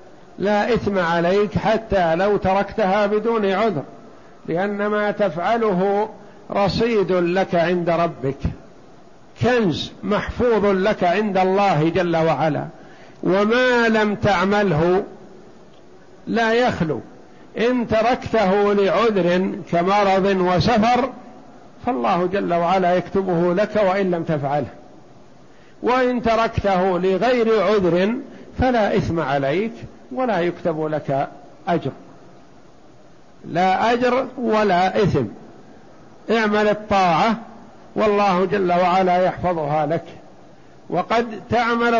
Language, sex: Arabic, male